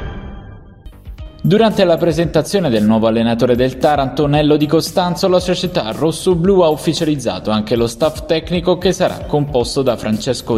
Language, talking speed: Italian, 135 wpm